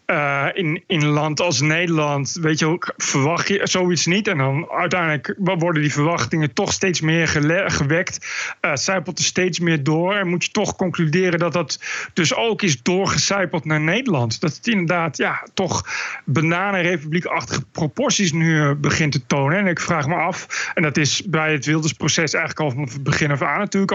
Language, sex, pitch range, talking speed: Dutch, male, 150-180 Hz, 185 wpm